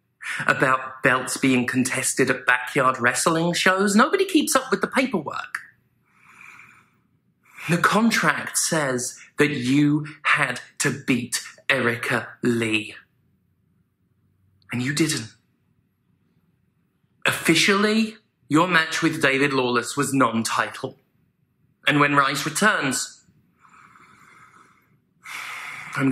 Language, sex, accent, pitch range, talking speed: English, male, British, 125-175 Hz, 90 wpm